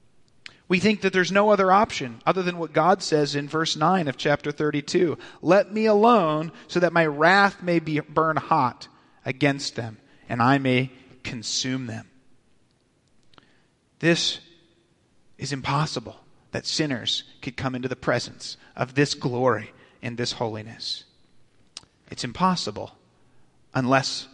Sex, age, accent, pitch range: male, 30-49, American, 130-170 Hz